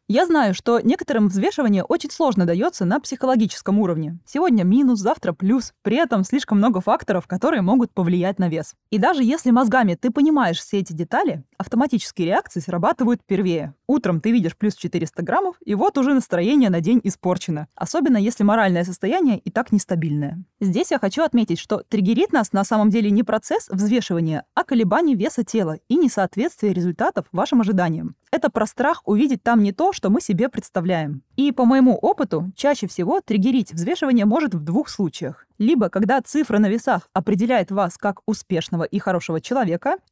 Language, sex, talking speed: Russian, female, 170 wpm